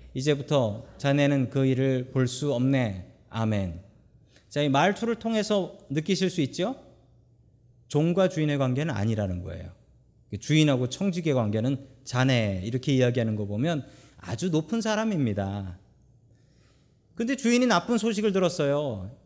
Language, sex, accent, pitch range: Korean, male, native, 120-175 Hz